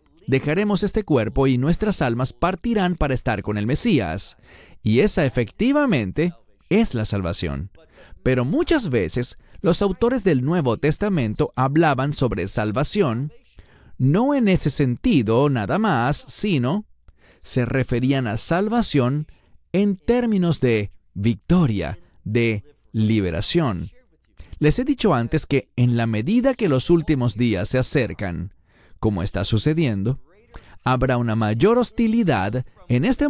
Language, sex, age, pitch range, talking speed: English, male, 40-59, 115-175 Hz, 125 wpm